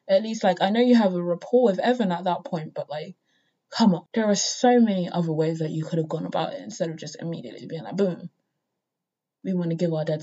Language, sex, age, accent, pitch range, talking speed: English, female, 20-39, British, 165-220 Hz, 260 wpm